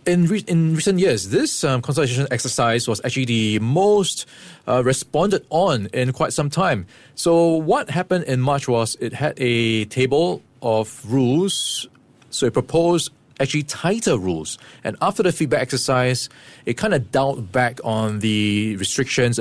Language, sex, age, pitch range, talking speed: English, male, 20-39, 115-145 Hz, 160 wpm